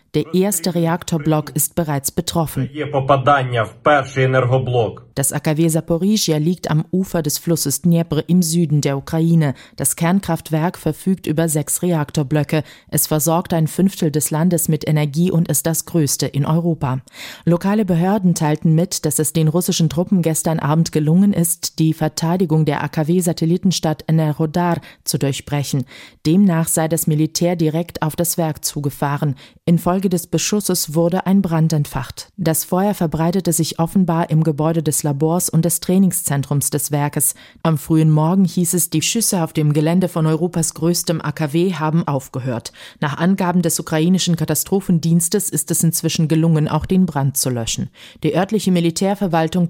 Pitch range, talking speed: 150-175 Hz, 145 wpm